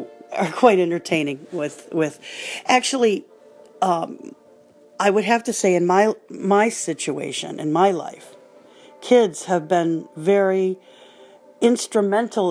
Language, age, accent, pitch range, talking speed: English, 50-69, American, 165-225 Hz, 115 wpm